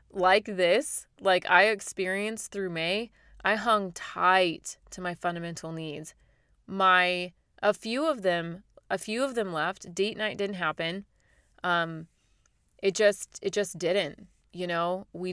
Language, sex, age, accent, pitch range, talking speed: English, female, 30-49, American, 165-195 Hz, 145 wpm